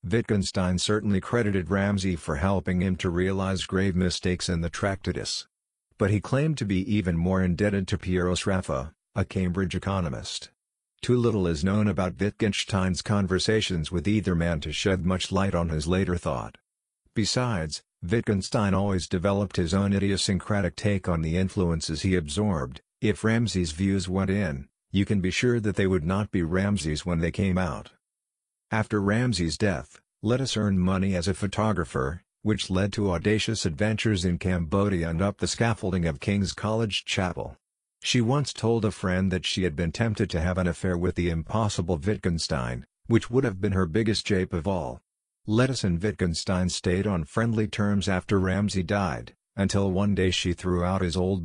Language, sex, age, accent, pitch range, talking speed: English, male, 50-69, American, 90-105 Hz, 170 wpm